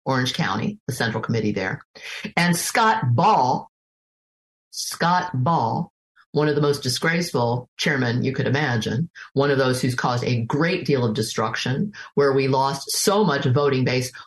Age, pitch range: 50-69, 140-190 Hz